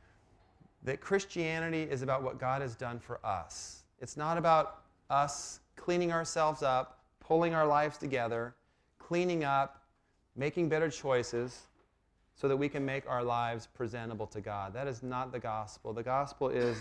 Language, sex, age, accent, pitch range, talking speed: English, male, 30-49, American, 115-150 Hz, 155 wpm